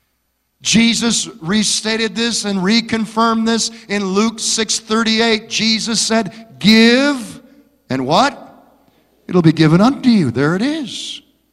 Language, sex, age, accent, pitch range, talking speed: English, male, 50-69, American, 170-220 Hz, 120 wpm